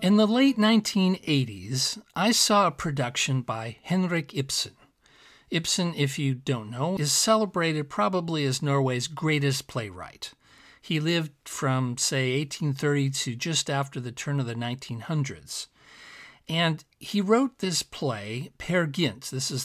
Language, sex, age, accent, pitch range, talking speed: English, male, 50-69, American, 130-180 Hz, 135 wpm